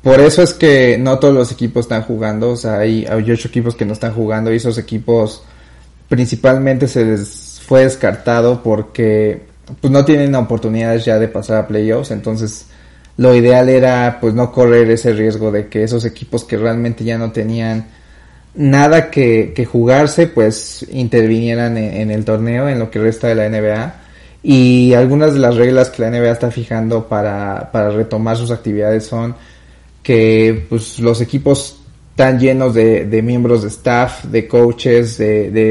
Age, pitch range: 30-49, 110-120 Hz